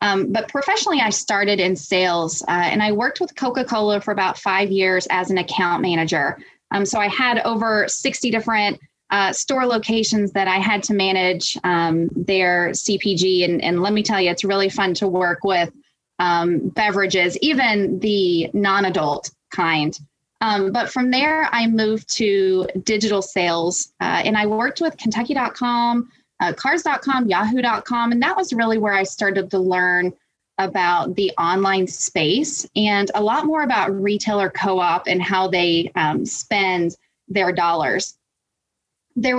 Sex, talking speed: female, 155 wpm